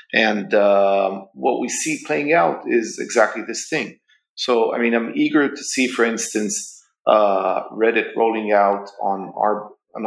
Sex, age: male, 40-59